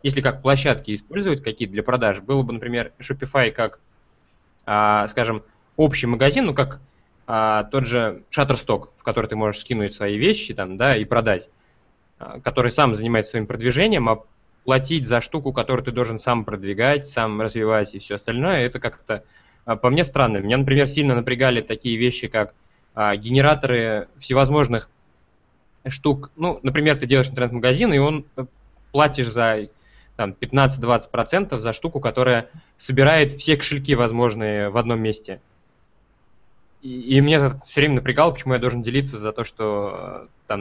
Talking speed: 150 wpm